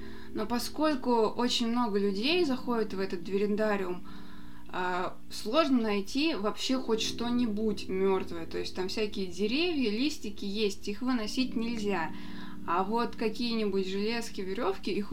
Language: Russian